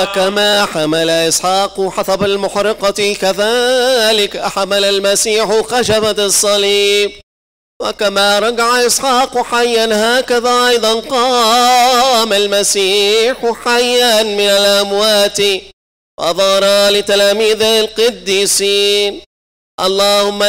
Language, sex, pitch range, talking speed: English, male, 195-220 Hz, 75 wpm